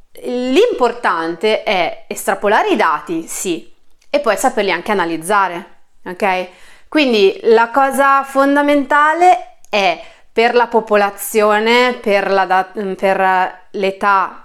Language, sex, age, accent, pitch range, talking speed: Italian, female, 30-49, native, 195-260 Hz, 100 wpm